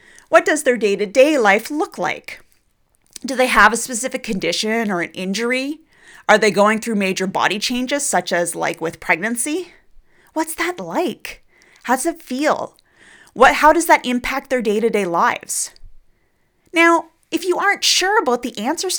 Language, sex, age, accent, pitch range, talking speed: English, female, 30-49, American, 195-290 Hz, 160 wpm